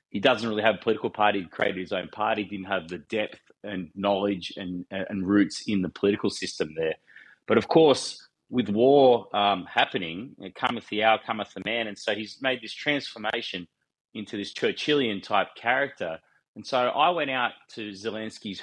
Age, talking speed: 30-49, 190 wpm